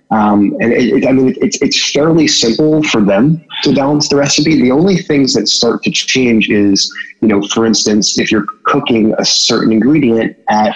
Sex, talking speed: male, 195 wpm